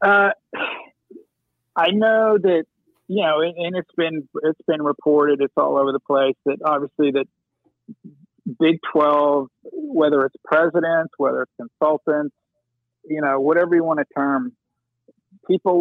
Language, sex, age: English, male, 50-69